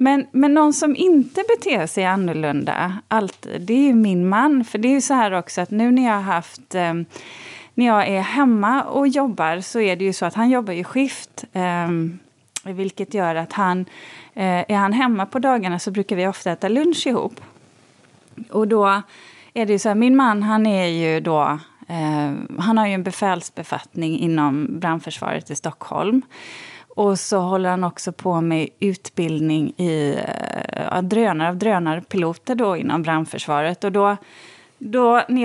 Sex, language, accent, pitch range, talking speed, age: female, Swedish, native, 170-230 Hz, 180 wpm, 30-49